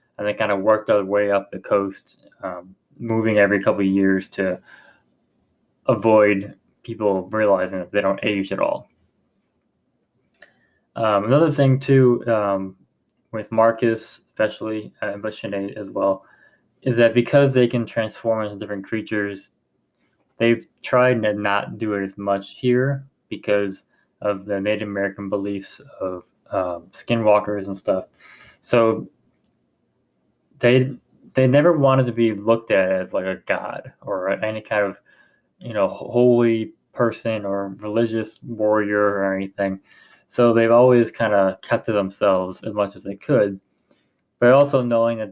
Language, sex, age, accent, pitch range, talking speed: English, male, 20-39, American, 100-115 Hz, 145 wpm